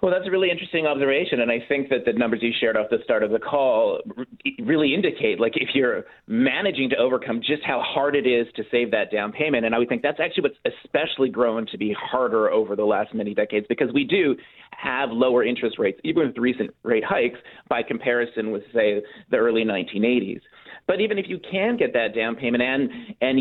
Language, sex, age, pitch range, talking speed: English, male, 30-49, 115-165 Hz, 220 wpm